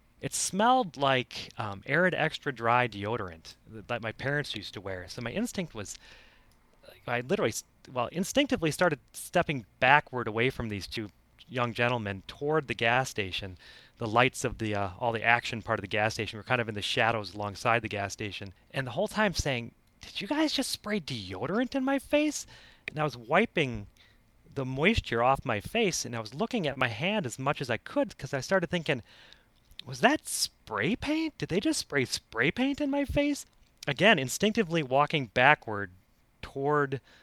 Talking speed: 185 wpm